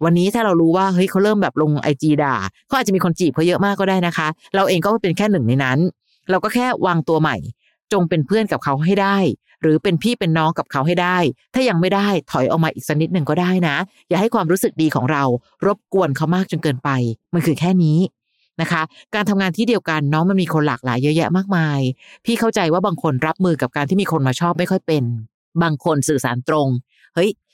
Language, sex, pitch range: Thai, female, 145-190 Hz